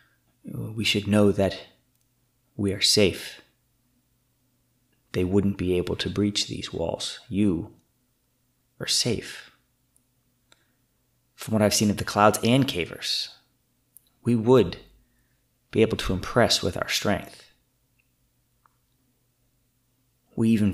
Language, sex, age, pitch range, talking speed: English, male, 30-49, 100-125 Hz, 110 wpm